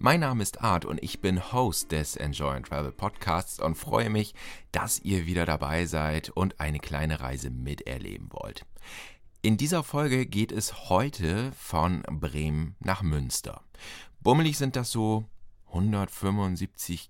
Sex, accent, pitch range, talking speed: male, German, 80-105 Hz, 145 wpm